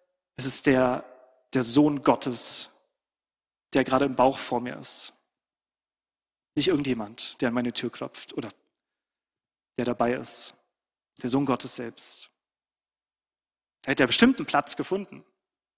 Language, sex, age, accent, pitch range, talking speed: German, male, 30-49, German, 135-180 Hz, 135 wpm